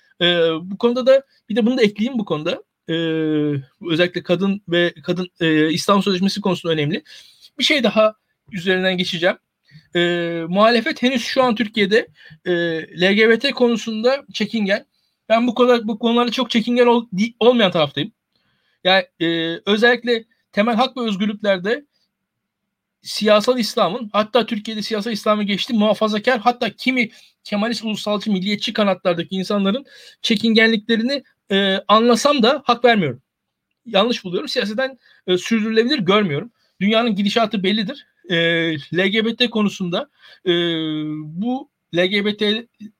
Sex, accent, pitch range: male, native, 185-235 Hz